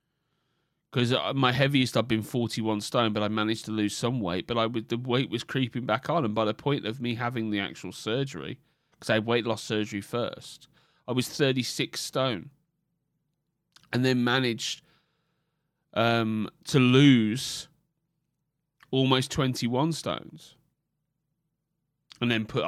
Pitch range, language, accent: 115-150 Hz, English, British